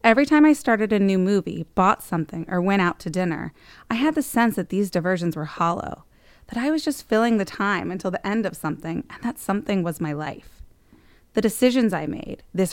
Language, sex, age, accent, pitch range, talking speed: English, female, 20-39, American, 175-230 Hz, 215 wpm